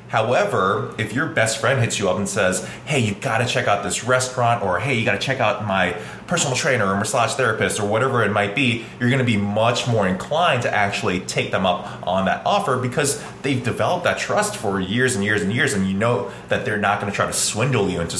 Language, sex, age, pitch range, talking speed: English, male, 20-39, 100-130 Hz, 245 wpm